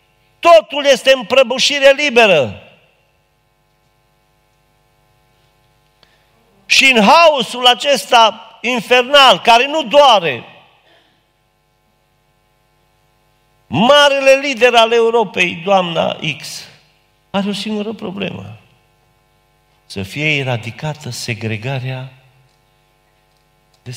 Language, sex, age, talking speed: Romanian, male, 50-69, 70 wpm